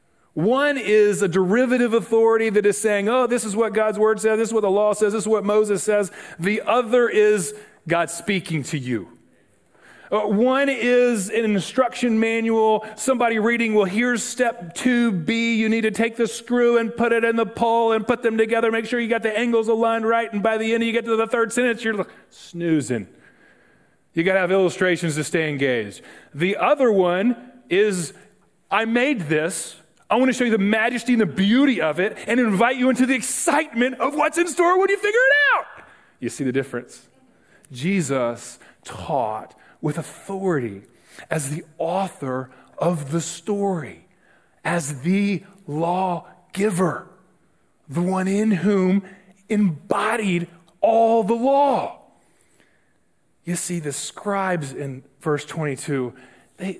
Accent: American